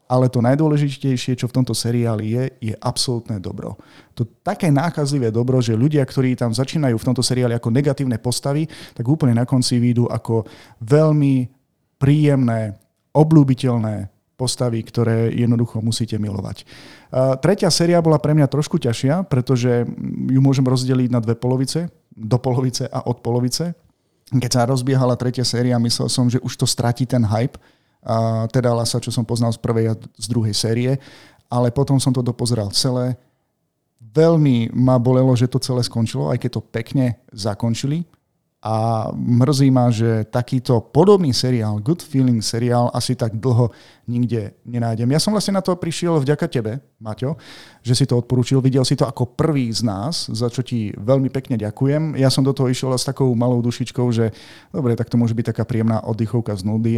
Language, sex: Slovak, male